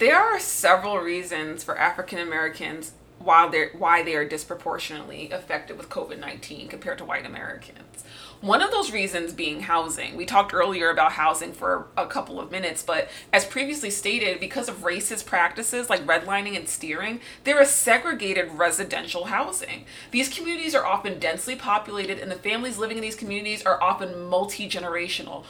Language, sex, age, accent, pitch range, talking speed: English, female, 30-49, American, 175-235 Hz, 160 wpm